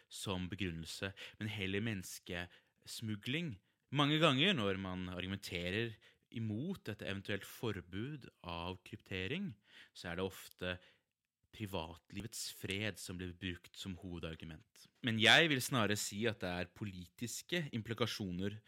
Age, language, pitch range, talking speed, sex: 20-39, English, 95-120 Hz, 130 wpm, male